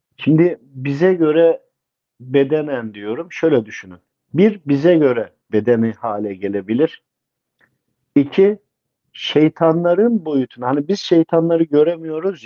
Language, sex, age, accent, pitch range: Japanese, male, 50-69, Turkish, 125-170 Hz